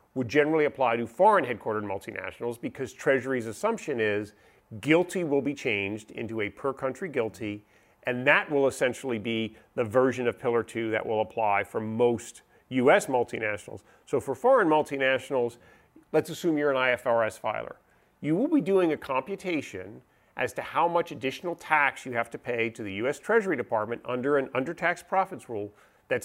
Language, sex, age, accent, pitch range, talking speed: English, male, 40-59, American, 115-165 Hz, 170 wpm